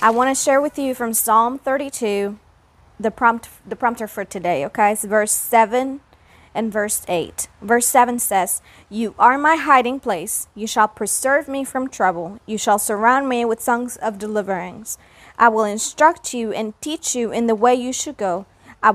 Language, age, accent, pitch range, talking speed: English, 30-49, American, 220-275 Hz, 180 wpm